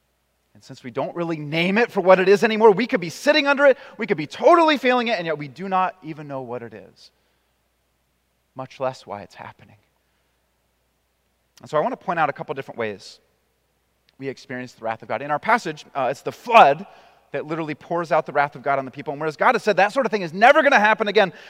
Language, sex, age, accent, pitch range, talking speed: English, male, 30-49, American, 105-175 Hz, 250 wpm